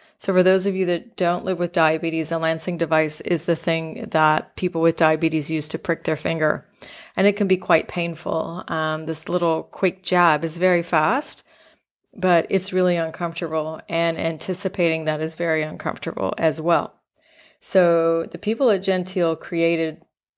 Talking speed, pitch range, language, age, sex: 170 wpm, 165-185 Hz, English, 30-49, female